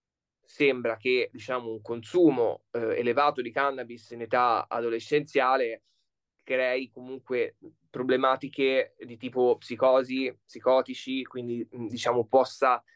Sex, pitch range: male, 115-135 Hz